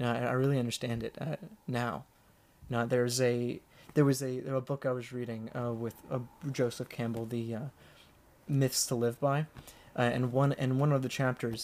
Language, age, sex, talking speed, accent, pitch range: English, 30-49, male, 200 wpm, American, 115-135 Hz